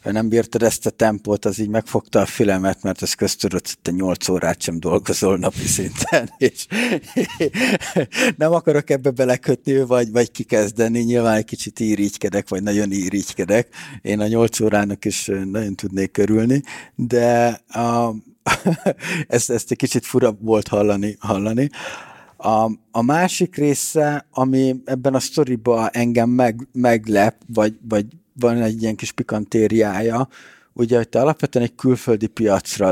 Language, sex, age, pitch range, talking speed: Hungarian, male, 50-69, 105-125 Hz, 145 wpm